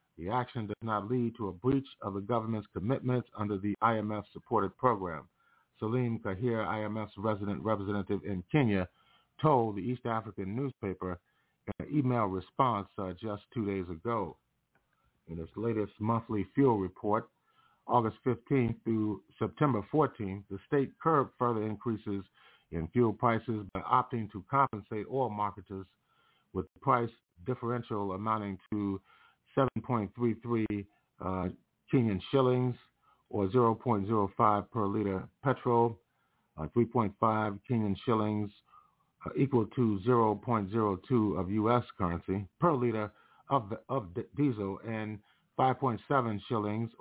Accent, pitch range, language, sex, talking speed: American, 100-120 Hz, English, male, 115 wpm